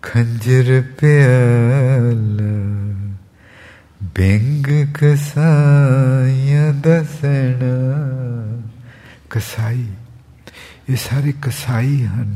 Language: Punjabi